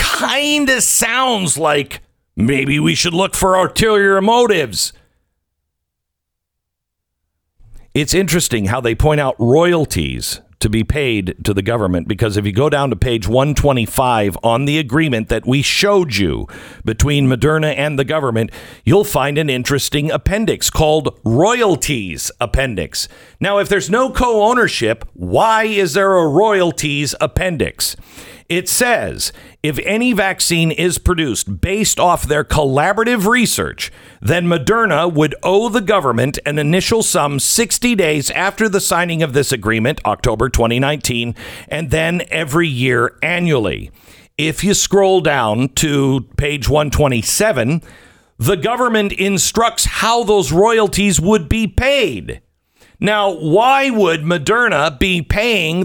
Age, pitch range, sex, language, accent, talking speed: 50-69, 125-195 Hz, male, English, American, 130 wpm